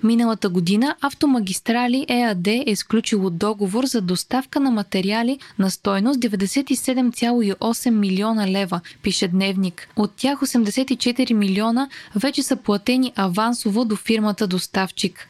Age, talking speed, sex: 20-39, 115 wpm, female